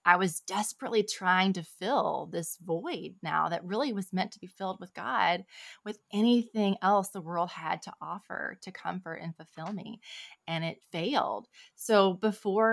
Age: 20-39